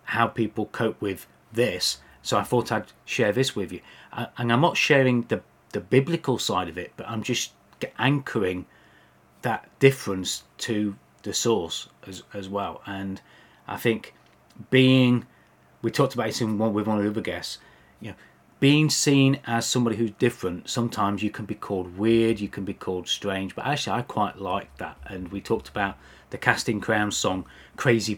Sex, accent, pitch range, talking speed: male, British, 90-125 Hz, 180 wpm